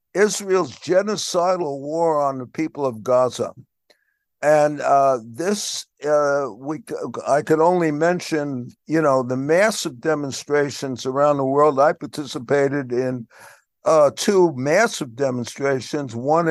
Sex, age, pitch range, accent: male, 60-79, 135-165 Hz, American